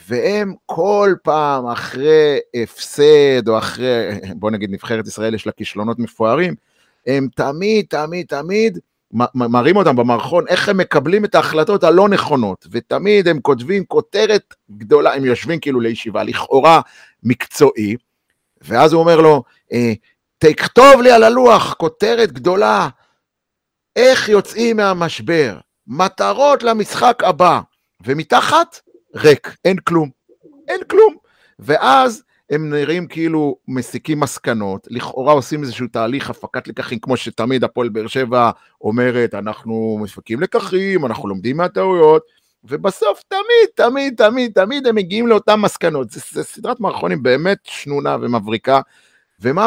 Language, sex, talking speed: Hebrew, male, 125 wpm